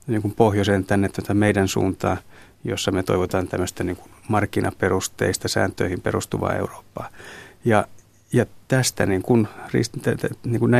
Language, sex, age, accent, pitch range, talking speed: Finnish, male, 30-49, native, 95-110 Hz, 130 wpm